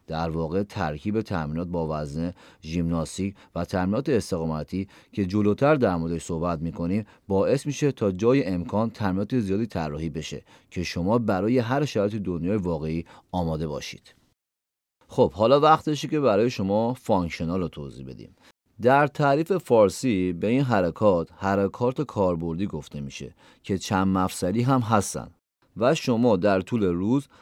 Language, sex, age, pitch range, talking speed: Persian, male, 30-49, 85-110 Hz, 140 wpm